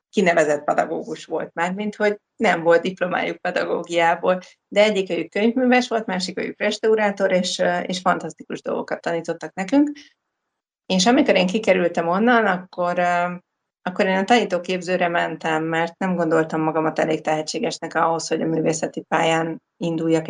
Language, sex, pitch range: Hungarian, female, 165-205 Hz